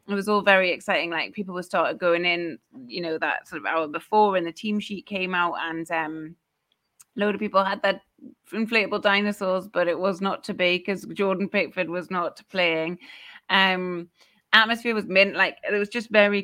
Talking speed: 195 wpm